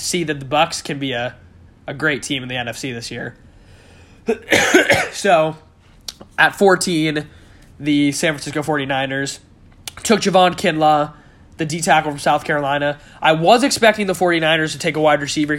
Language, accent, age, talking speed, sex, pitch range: English, American, 20-39, 155 wpm, male, 135-165 Hz